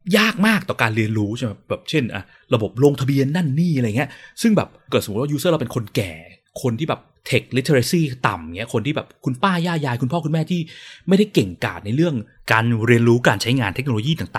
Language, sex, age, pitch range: Thai, male, 20-39, 110-160 Hz